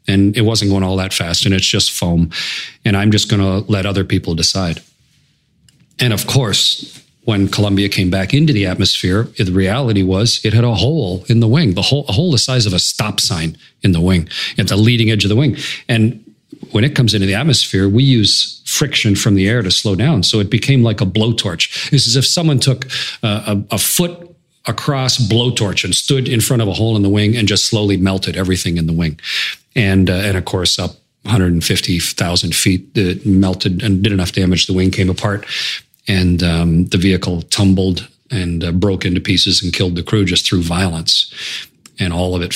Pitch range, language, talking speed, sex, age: 95-120 Hz, English, 210 wpm, male, 40-59